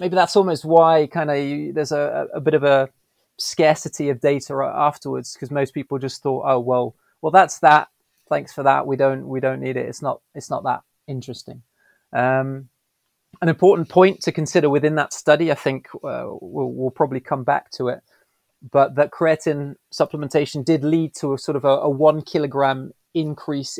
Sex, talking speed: male, 190 wpm